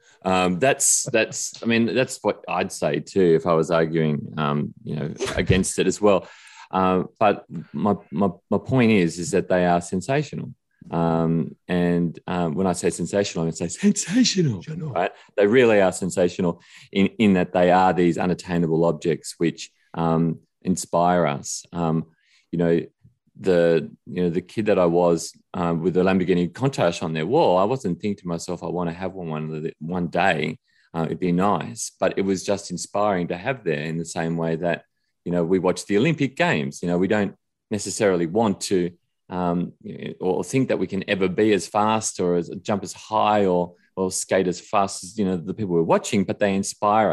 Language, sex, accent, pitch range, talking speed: English, male, Australian, 85-100 Hz, 200 wpm